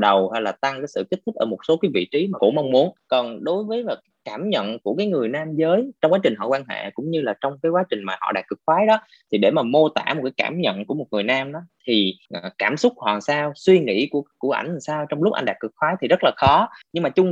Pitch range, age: 130-185 Hz, 20-39